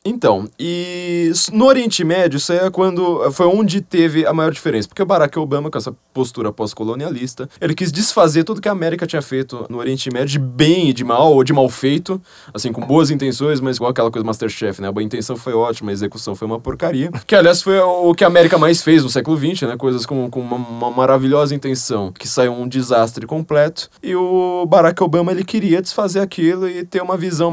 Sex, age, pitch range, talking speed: male, 20-39, 125-175 Hz, 220 wpm